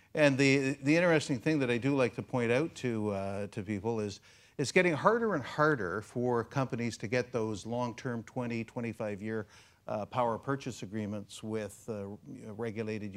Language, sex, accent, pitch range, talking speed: English, male, American, 105-130 Hz, 170 wpm